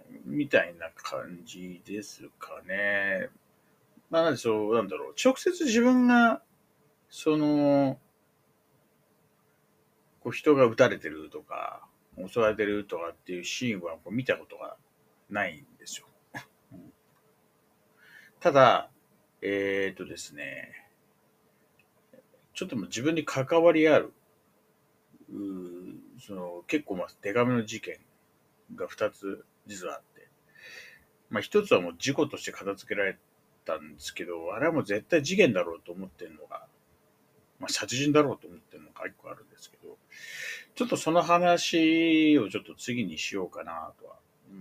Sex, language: male, Japanese